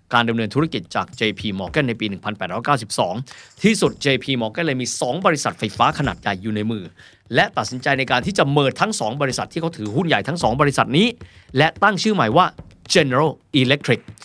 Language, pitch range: Thai, 115-175 Hz